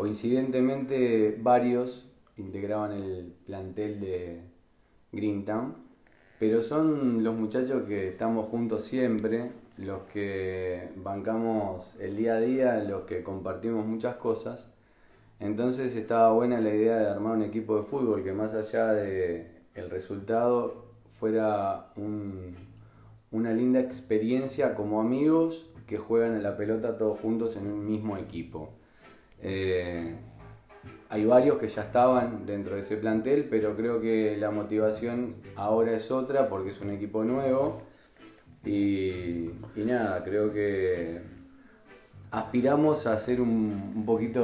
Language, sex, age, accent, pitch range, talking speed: Spanish, male, 20-39, Argentinian, 100-120 Hz, 130 wpm